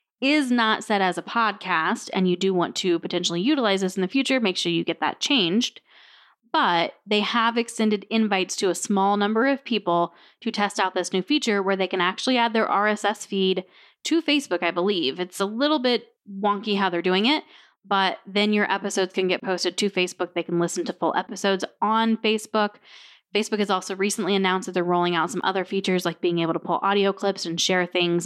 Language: English